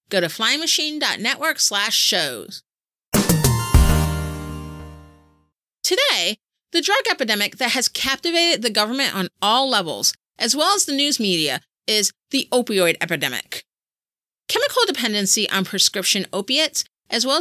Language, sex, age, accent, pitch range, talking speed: English, female, 30-49, American, 180-280 Hz, 115 wpm